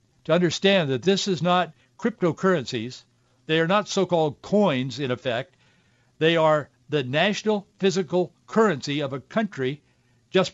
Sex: male